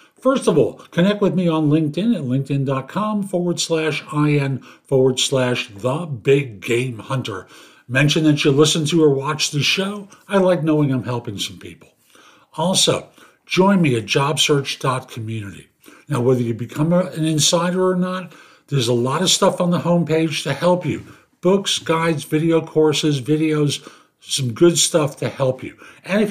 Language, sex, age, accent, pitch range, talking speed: English, male, 50-69, American, 130-170 Hz, 155 wpm